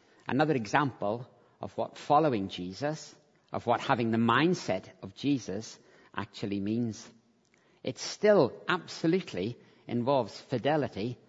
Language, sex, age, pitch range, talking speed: English, male, 50-69, 110-145 Hz, 105 wpm